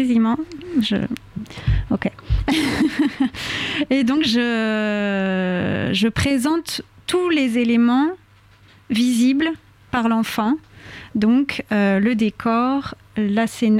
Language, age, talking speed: French, 30-49, 85 wpm